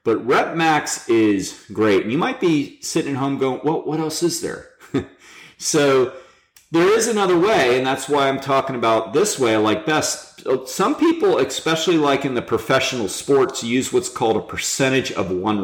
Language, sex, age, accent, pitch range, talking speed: English, male, 40-59, American, 90-135 Hz, 185 wpm